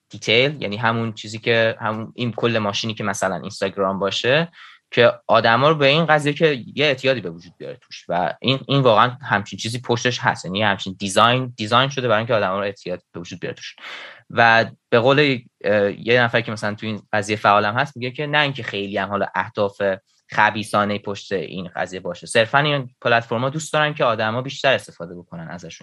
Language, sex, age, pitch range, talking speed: Persian, male, 20-39, 105-130 Hz, 195 wpm